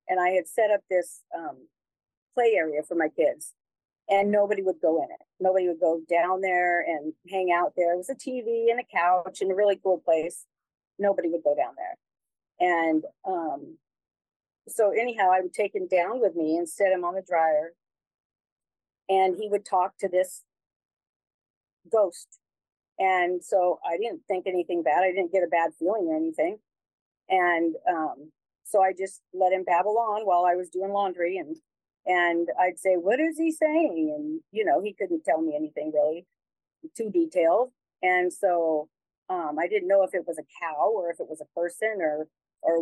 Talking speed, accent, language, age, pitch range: 190 wpm, American, English, 50-69, 175-240 Hz